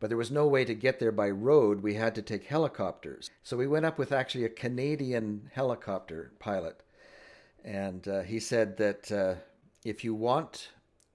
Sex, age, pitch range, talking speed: male, 50-69, 110-140 Hz, 185 wpm